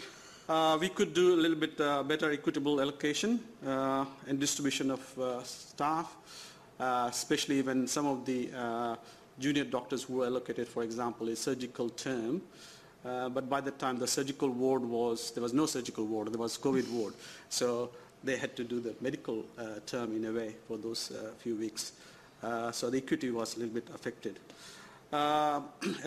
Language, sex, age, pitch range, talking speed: English, male, 50-69, 115-140 Hz, 180 wpm